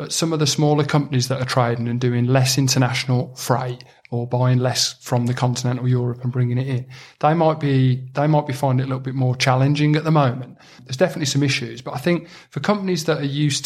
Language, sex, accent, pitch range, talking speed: English, male, British, 125-140 Hz, 235 wpm